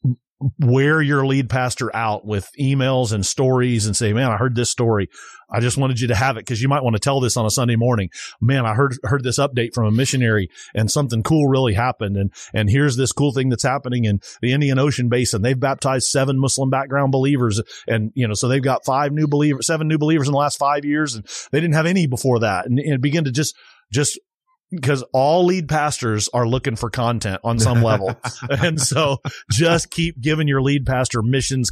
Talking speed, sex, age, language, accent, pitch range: 220 wpm, male, 30-49, English, American, 115-140 Hz